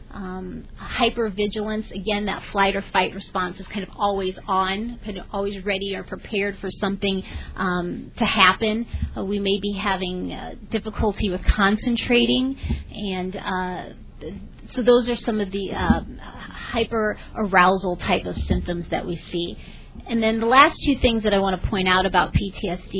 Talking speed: 170 wpm